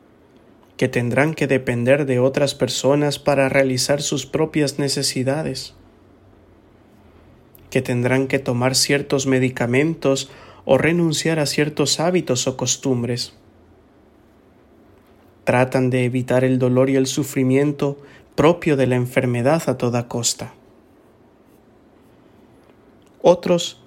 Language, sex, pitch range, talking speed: English, male, 125-145 Hz, 105 wpm